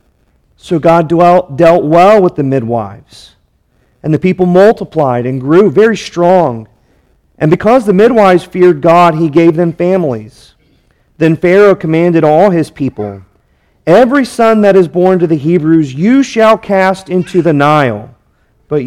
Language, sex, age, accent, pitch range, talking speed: English, male, 40-59, American, 150-195 Hz, 145 wpm